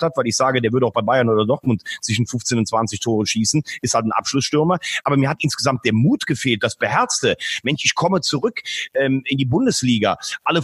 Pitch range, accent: 120-150 Hz, German